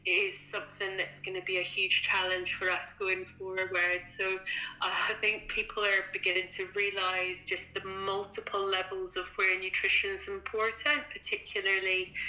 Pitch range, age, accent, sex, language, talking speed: 195-295 Hz, 20-39, British, female, English, 150 wpm